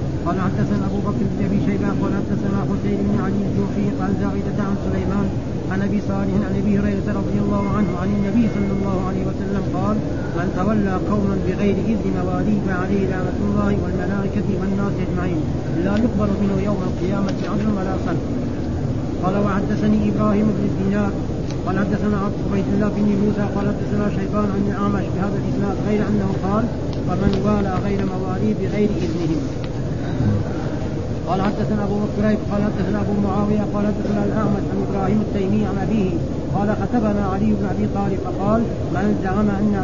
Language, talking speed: Arabic, 160 wpm